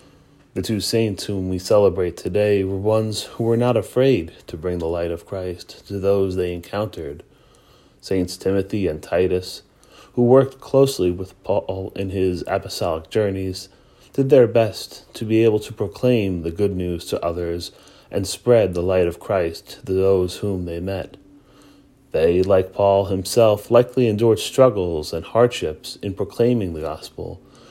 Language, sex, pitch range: English, male, 90-115 Hz